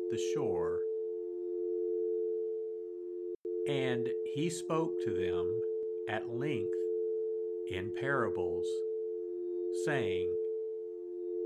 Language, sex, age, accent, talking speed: English, male, 50-69, American, 65 wpm